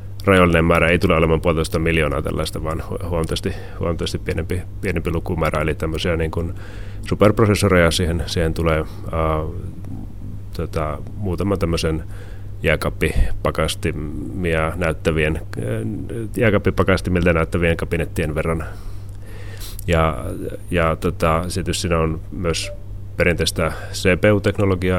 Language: Finnish